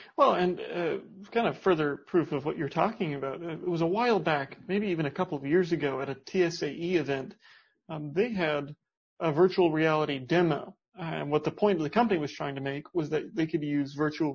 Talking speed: 225 wpm